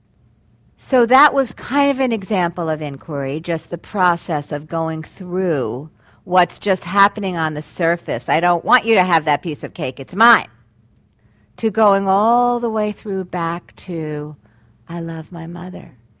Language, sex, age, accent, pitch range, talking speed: English, female, 50-69, American, 120-185 Hz, 165 wpm